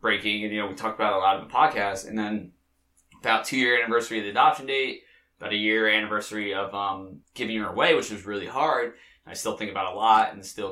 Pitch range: 100-115 Hz